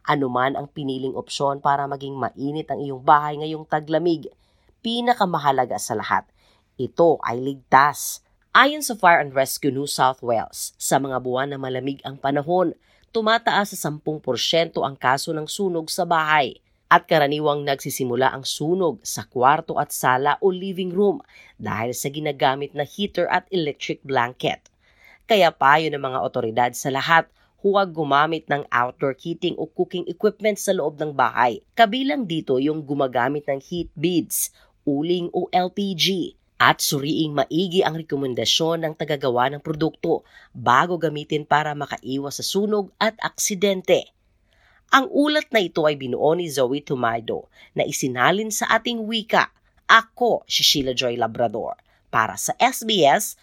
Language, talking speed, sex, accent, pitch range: Filipino, 150 wpm, female, native, 135-180 Hz